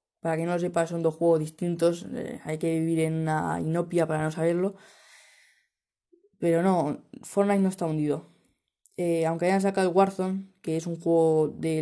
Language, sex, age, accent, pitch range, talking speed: Spanish, female, 20-39, Spanish, 165-195 Hz, 180 wpm